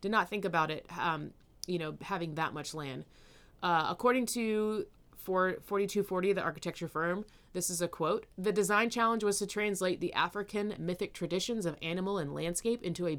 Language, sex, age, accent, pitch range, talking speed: English, female, 30-49, American, 160-195 Hz, 180 wpm